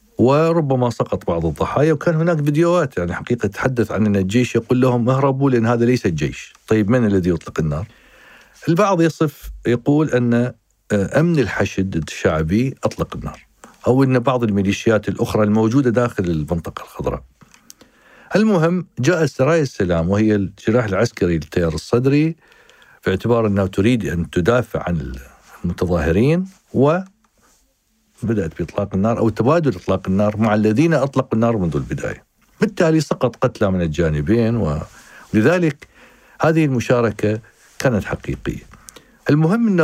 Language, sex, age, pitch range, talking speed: Arabic, male, 50-69, 100-145 Hz, 130 wpm